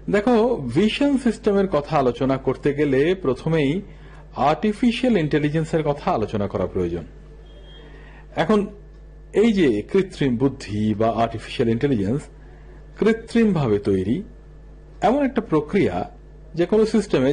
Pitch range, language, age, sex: 130-180 Hz, Bengali, 50-69, male